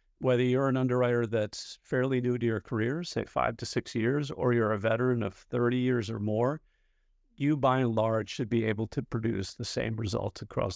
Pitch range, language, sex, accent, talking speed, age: 110-130 Hz, English, male, American, 205 wpm, 50-69